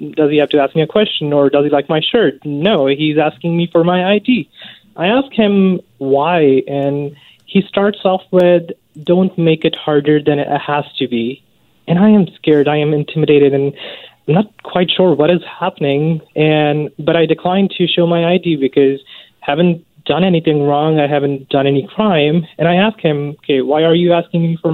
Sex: male